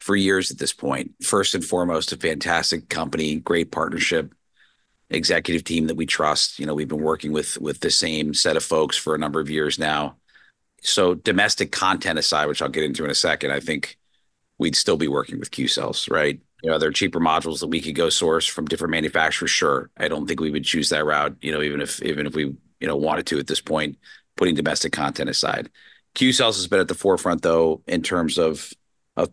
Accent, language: American, English